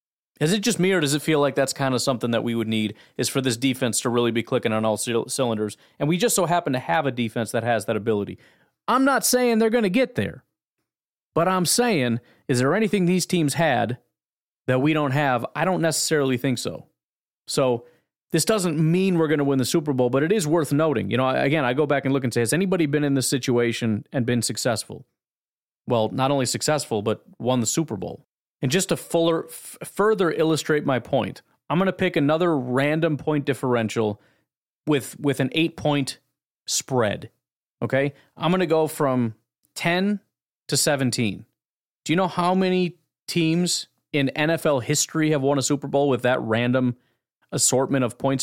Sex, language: male, English